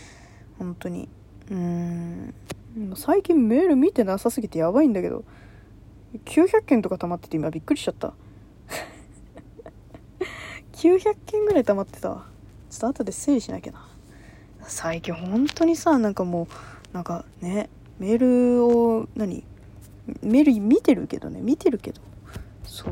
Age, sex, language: 20-39, female, Japanese